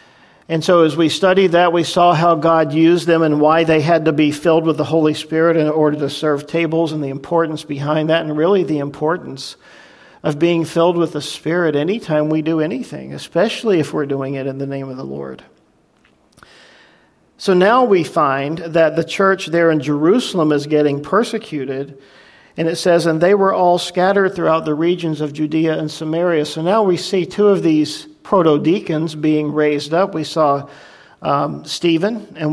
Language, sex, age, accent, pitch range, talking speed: English, male, 50-69, American, 150-170 Hz, 190 wpm